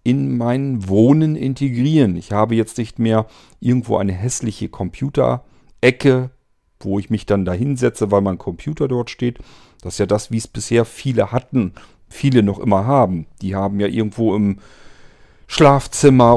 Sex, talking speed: male, 160 wpm